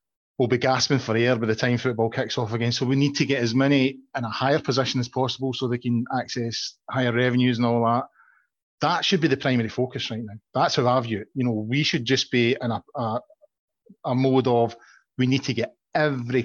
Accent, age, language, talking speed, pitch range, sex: British, 30-49, English, 230 wpm, 115-135 Hz, male